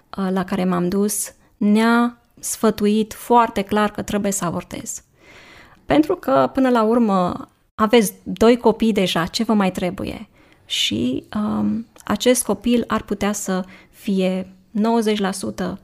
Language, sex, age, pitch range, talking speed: Romanian, female, 20-39, 195-235 Hz, 125 wpm